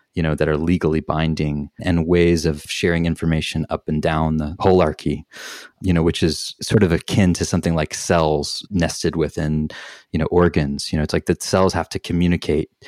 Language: English